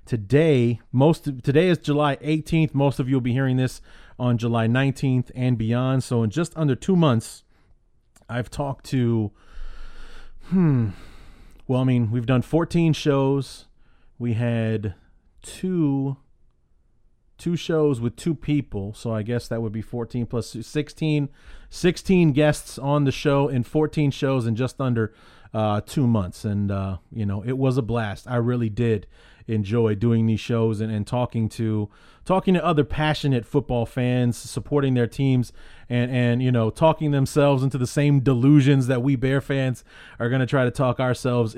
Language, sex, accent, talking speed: English, male, American, 165 wpm